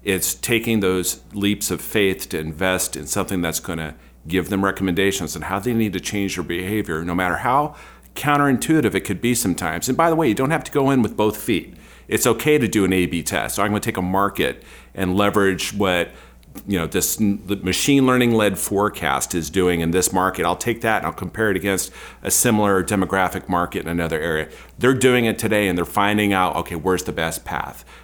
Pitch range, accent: 90-110 Hz, American